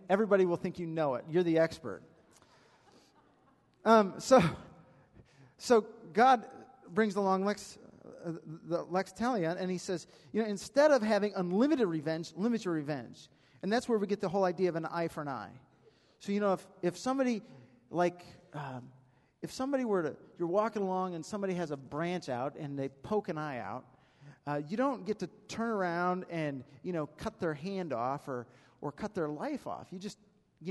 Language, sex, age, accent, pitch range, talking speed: English, male, 40-59, American, 160-215 Hz, 190 wpm